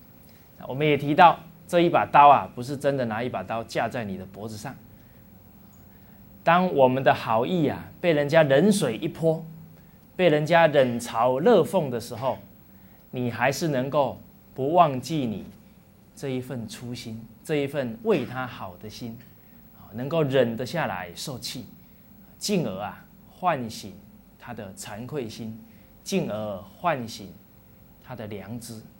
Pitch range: 115-160 Hz